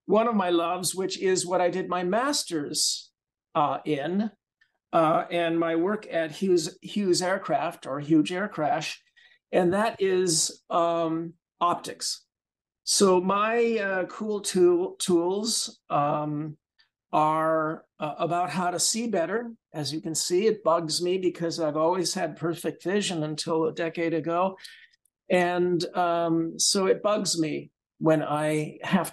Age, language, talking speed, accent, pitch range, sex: 50-69, English, 140 wpm, American, 165-205 Hz, male